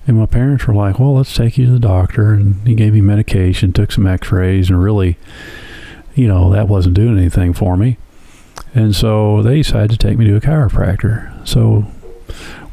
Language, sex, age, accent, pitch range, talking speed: English, male, 50-69, American, 95-115 Hz, 200 wpm